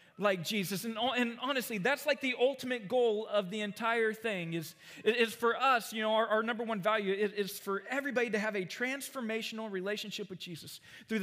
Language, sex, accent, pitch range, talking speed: English, male, American, 180-225 Hz, 200 wpm